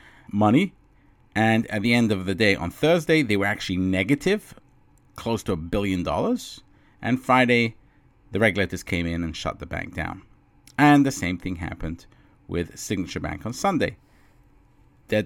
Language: English